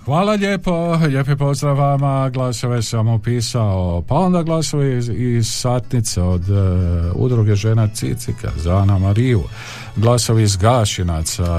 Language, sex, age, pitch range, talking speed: Croatian, male, 50-69, 95-120 Hz, 130 wpm